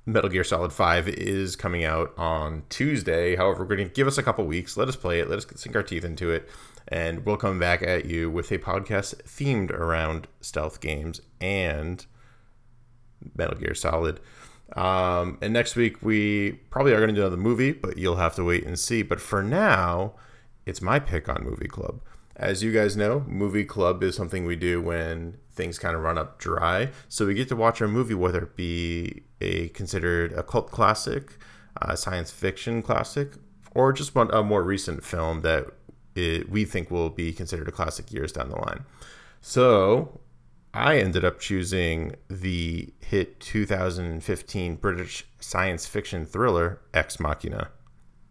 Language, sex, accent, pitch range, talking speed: English, male, American, 85-105 Hz, 175 wpm